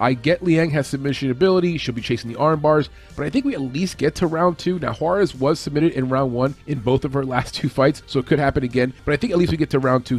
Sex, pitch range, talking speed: male, 125-160 Hz, 300 wpm